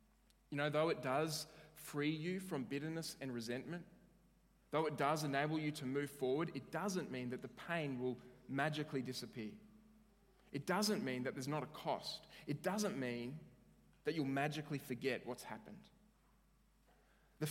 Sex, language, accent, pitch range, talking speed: male, English, Australian, 130-195 Hz, 160 wpm